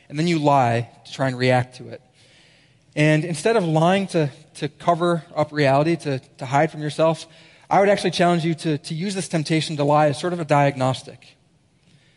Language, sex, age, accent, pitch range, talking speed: English, male, 20-39, American, 140-160 Hz, 200 wpm